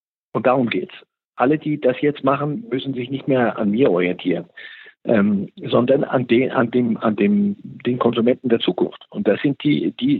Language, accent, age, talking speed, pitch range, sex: German, German, 50-69, 190 wpm, 120-150 Hz, male